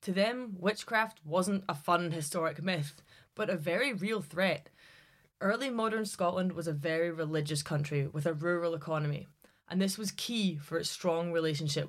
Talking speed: 165 wpm